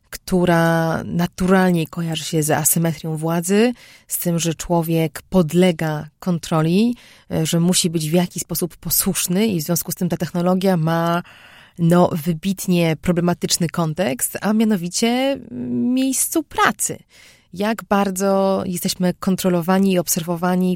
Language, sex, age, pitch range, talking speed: Polish, female, 30-49, 170-185 Hz, 120 wpm